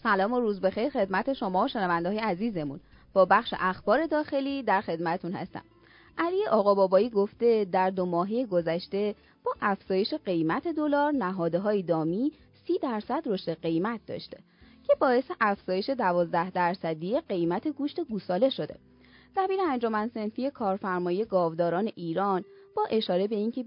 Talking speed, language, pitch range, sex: 130 wpm, Persian, 180-270 Hz, female